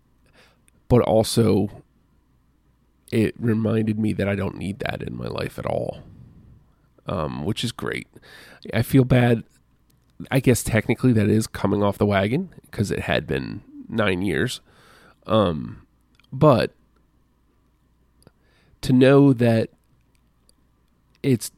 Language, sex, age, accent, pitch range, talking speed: English, male, 40-59, American, 105-120 Hz, 120 wpm